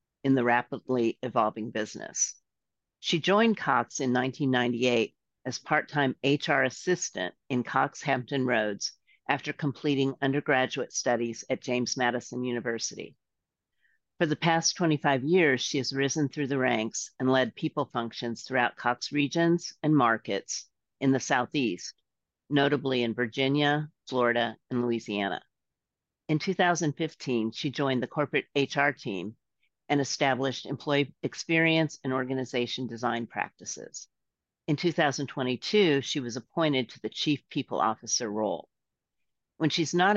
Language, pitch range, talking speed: English, 120-145 Hz, 125 wpm